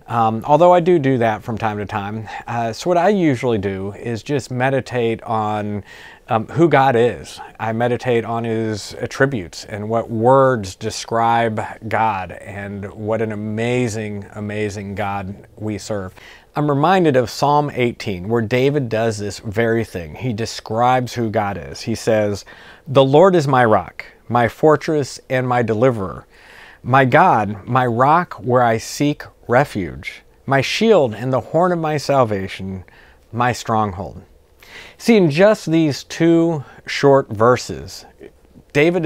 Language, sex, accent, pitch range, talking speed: English, male, American, 110-135 Hz, 145 wpm